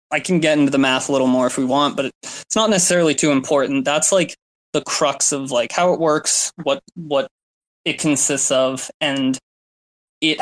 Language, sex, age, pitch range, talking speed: English, male, 20-39, 130-175 Hz, 195 wpm